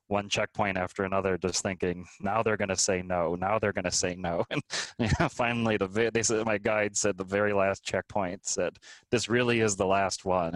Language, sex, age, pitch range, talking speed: English, male, 20-39, 90-100 Hz, 220 wpm